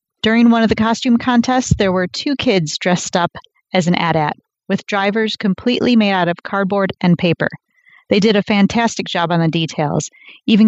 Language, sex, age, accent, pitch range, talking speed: English, female, 30-49, American, 180-220 Hz, 185 wpm